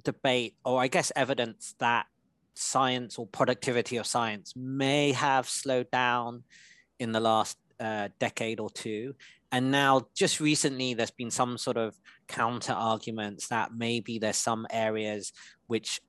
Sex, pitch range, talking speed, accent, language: male, 110-140 Hz, 145 wpm, British, English